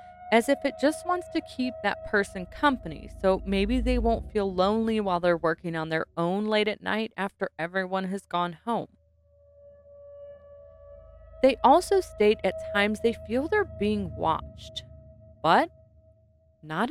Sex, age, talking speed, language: female, 20-39, 150 wpm, English